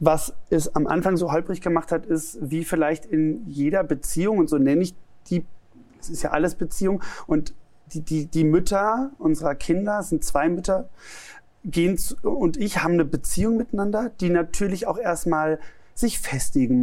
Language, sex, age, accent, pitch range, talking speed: German, male, 30-49, German, 155-190 Hz, 175 wpm